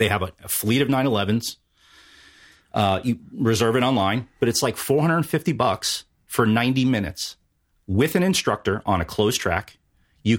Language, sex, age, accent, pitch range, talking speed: English, male, 30-49, American, 95-115 Hz, 155 wpm